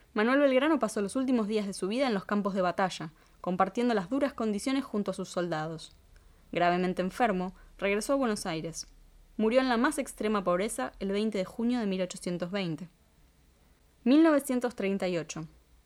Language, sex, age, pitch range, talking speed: Spanish, female, 20-39, 180-245 Hz, 155 wpm